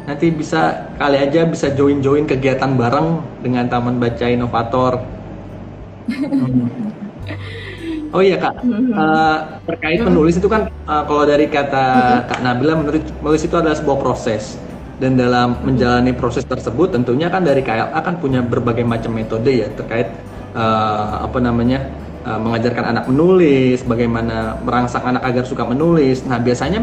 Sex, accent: male, native